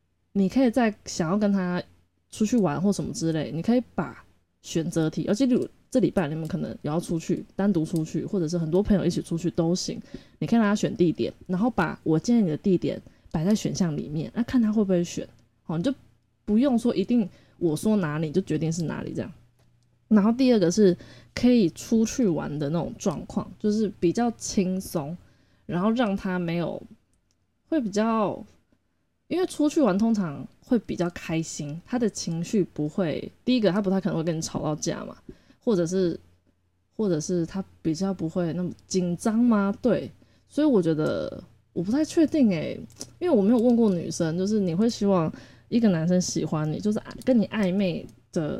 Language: Chinese